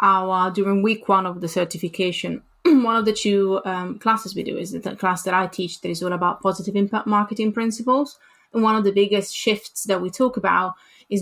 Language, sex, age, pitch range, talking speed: English, female, 20-39, 175-200 Hz, 215 wpm